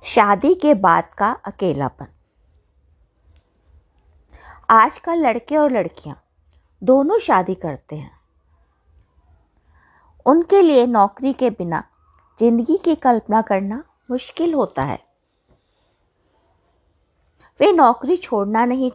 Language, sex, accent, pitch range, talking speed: Hindi, female, native, 185-270 Hz, 95 wpm